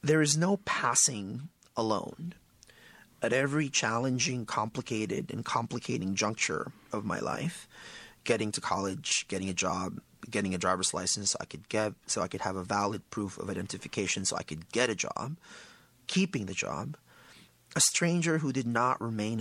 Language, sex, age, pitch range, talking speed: English, male, 30-49, 105-140 Hz, 165 wpm